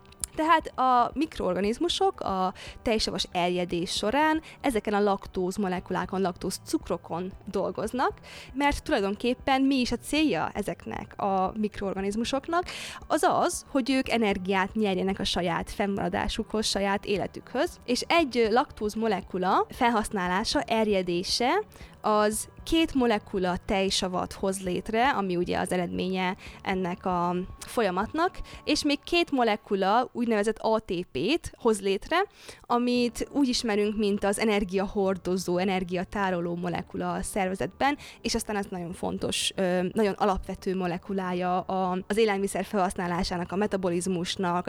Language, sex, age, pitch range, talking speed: Hungarian, female, 20-39, 185-235 Hz, 115 wpm